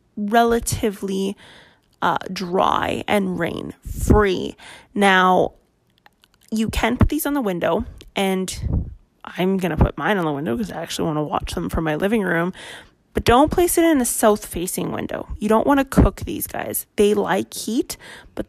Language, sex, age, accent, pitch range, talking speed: English, female, 20-39, American, 180-215 Hz, 170 wpm